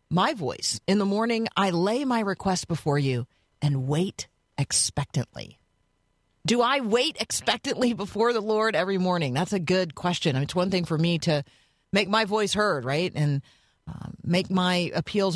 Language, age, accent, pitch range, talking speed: English, 40-59, American, 145-195 Hz, 170 wpm